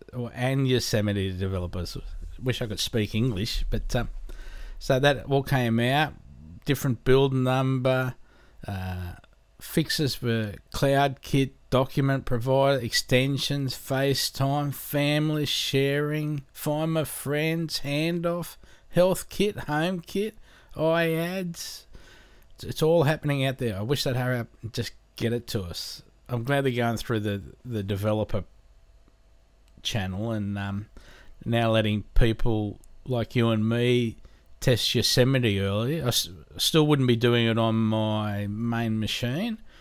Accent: Australian